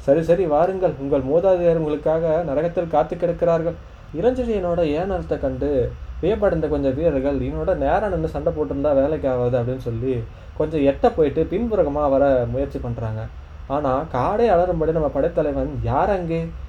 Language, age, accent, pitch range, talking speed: Tamil, 20-39, native, 130-170 Hz, 135 wpm